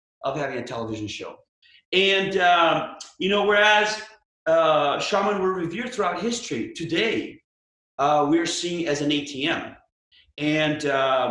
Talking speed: 135 wpm